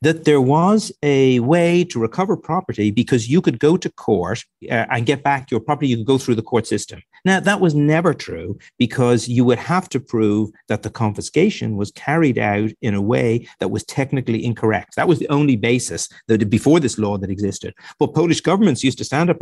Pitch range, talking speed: 105-145 Hz, 210 wpm